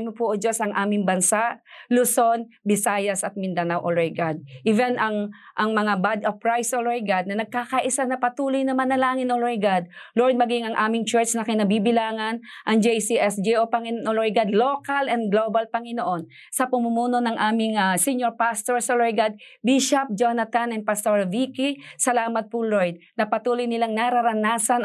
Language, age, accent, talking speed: Filipino, 40-59, native, 165 wpm